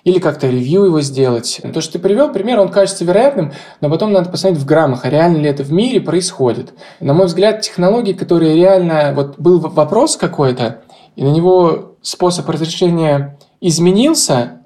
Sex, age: male, 20-39